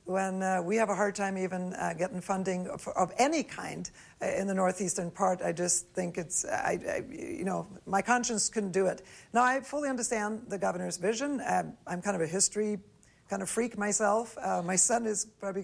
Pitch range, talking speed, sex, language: 185-220 Hz, 205 wpm, female, English